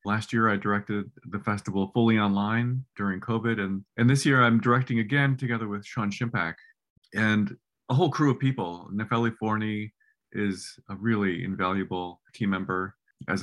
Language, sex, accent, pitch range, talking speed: English, male, American, 95-120 Hz, 160 wpm